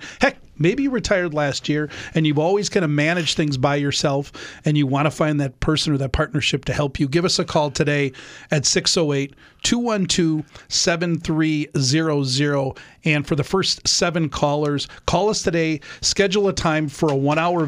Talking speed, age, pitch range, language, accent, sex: 170 wpm, 40-59, 150-175 Hz, English, American, male